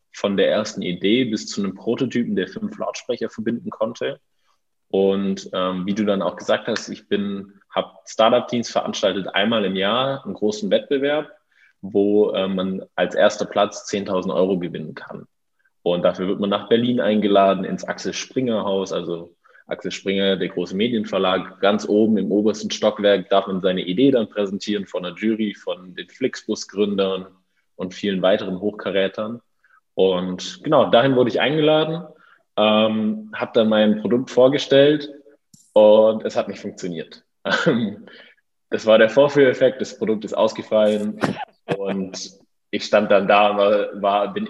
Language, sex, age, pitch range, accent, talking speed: German, male, 20-39, 100-120 Hz, German, 150 wpm